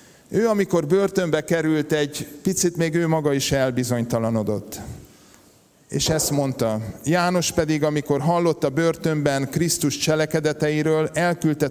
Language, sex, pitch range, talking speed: Hungarian, male, 120-155 Hz, 120 wpm